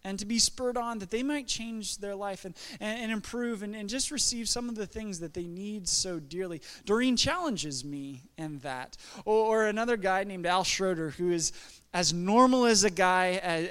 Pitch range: 190-235 Hz